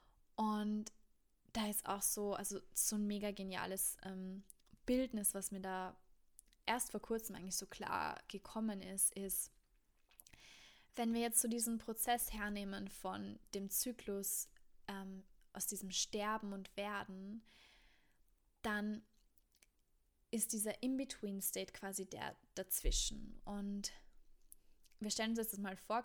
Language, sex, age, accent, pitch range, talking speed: German, female, 20-39, German, 195-220 Hz, 125 wpm